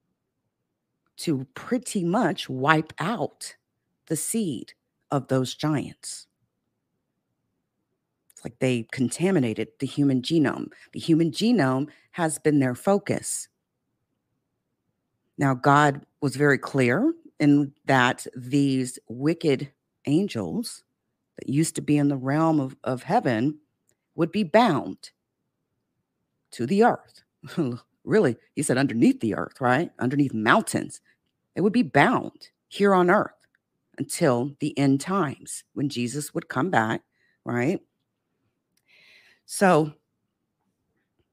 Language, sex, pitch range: English, female, 125-185 Hz